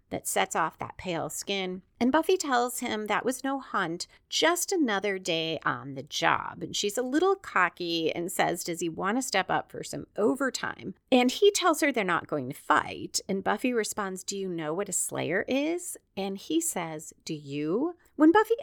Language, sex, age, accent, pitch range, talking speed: English, female, 30-49, American, 190-280 Hz, 200 wpm